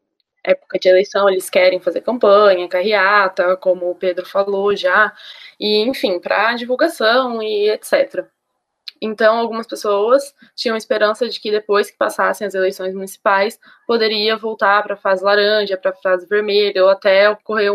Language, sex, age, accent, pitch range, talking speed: Portuguese, female, 10-29, Brazilian, 190-225 Hz, 150 wpm